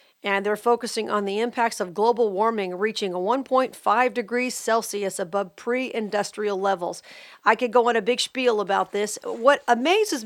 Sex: female